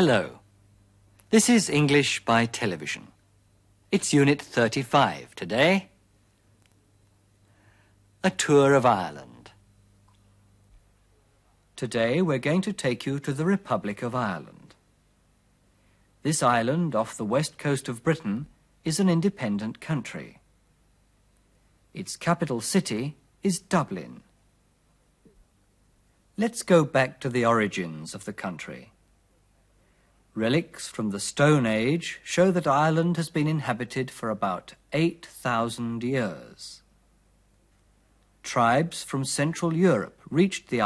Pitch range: 100-155 Hz